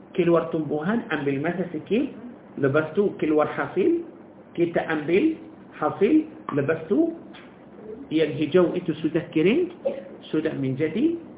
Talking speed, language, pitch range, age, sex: 115 wpm, Malay, 160-255 Hz, 50-69, male